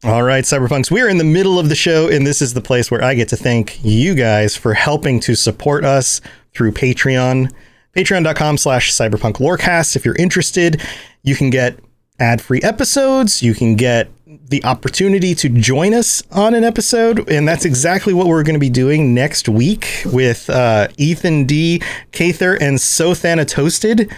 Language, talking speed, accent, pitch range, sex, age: English, 175 wpm, American, 125-170 Hz, male, 30-49